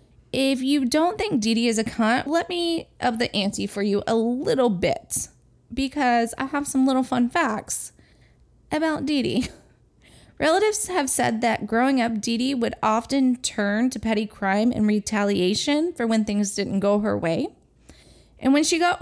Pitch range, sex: 220-290 Hz, female